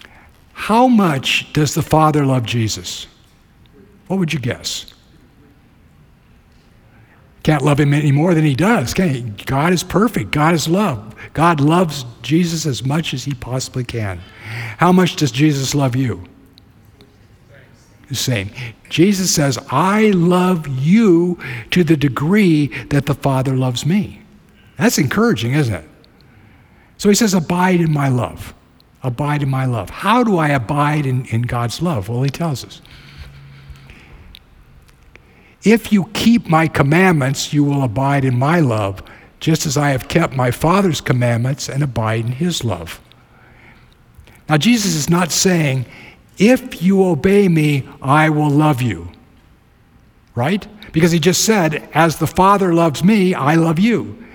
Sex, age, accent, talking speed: male, 60-79, American, 150 wpm